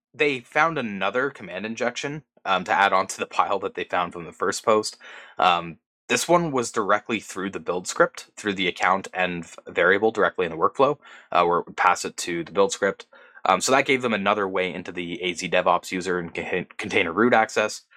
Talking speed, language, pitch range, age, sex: 210 wpm, English, 90-135 Hz, 20-39, male